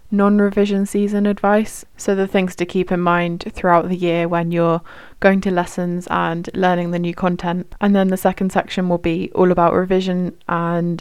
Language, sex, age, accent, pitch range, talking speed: English, female, 20-39, British, 170-195 Hz, 185 wpm